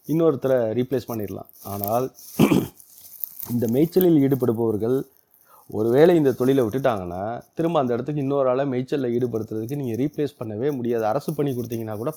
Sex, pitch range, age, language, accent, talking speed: male, 120-150 Hz, 30-49, Tamil, native, 125 wpm